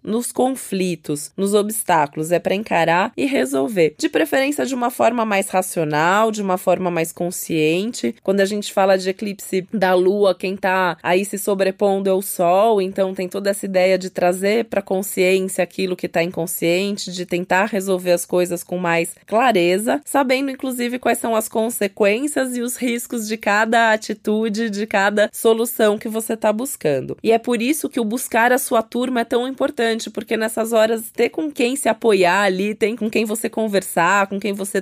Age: 20-39